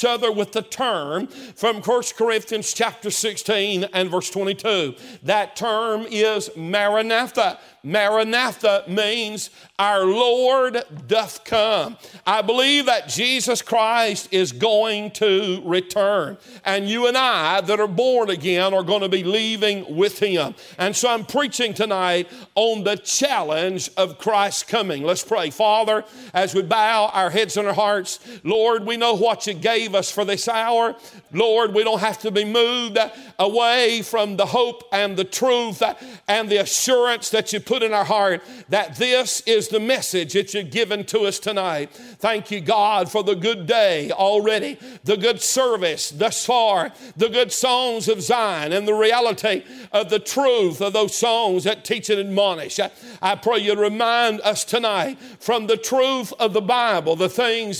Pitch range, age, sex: 200-235 Hz, 50-69, male